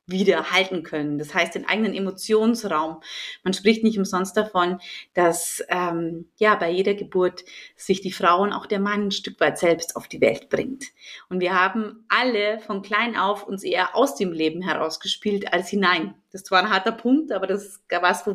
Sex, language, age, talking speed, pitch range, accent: female, German, 30-49, 190 wpm, 190-240 Hz, German